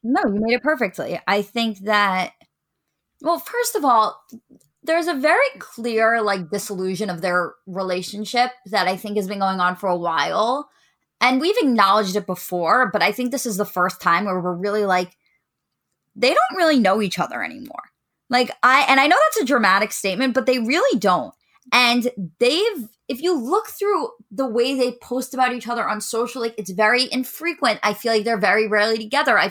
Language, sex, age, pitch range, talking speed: English, female, 20-39, 195-250 Hz, 195 wpm